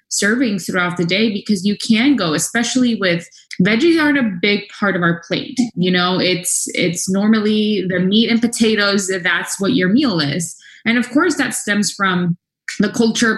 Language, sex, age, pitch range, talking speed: English, female, 20-39, 175-220 Hz, 180 wpm